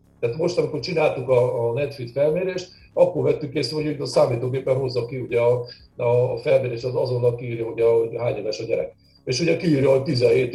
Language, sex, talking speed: Hungarian, male, 175 wpm